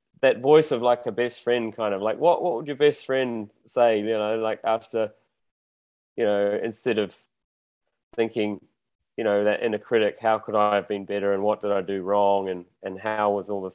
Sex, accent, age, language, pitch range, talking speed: male, Australian, 20-39, English, 100-120 Hz, 215 wpm